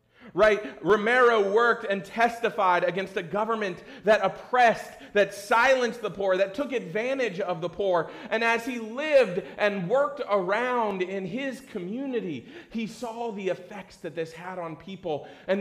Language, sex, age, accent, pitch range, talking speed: English, male, 40-59, American, 140-200 Hz, 155 wpm